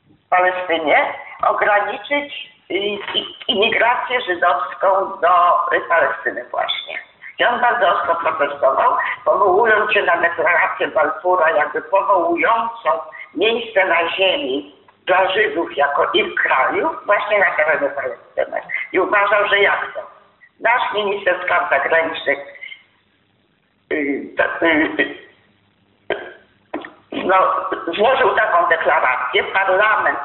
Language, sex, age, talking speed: Polish, male, 50-69, 90 wpm